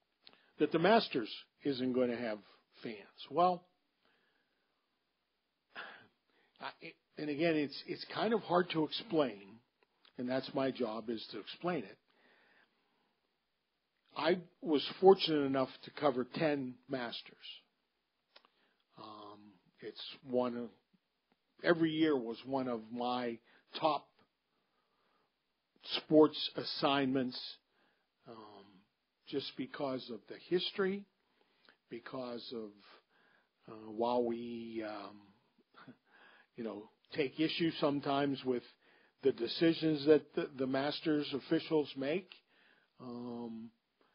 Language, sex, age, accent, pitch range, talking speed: English, male, 50-69, American, 120-150 Hz, 105 wpm